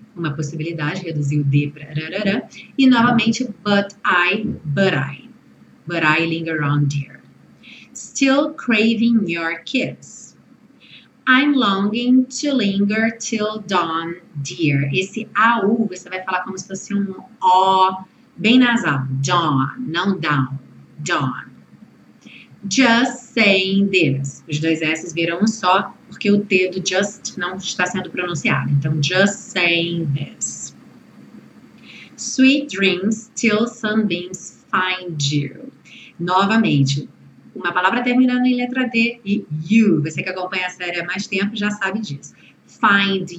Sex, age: female, 30-49